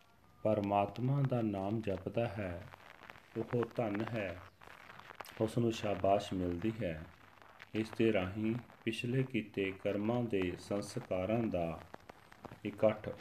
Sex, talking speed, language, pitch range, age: male, 105 wpm, Punjabi, 95-115 Hz, 40-59